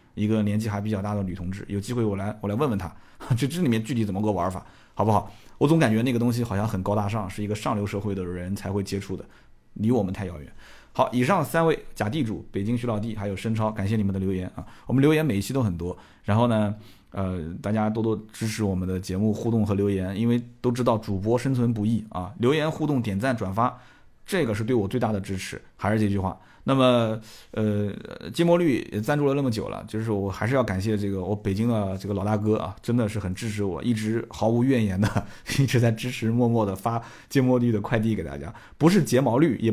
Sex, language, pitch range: male, Chinese, 100-125 Hz